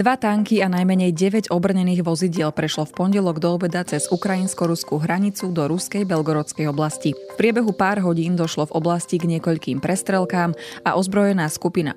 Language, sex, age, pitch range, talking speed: Slovak, female, 20-39, 155-190 Hz, 160 wpm